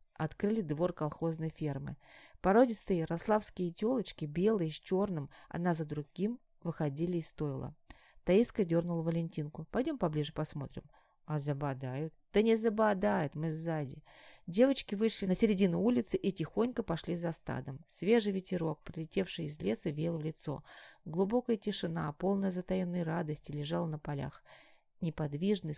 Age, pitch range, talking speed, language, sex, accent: 30-49, 150-190 Hz, 130 wpm, Russian, female, native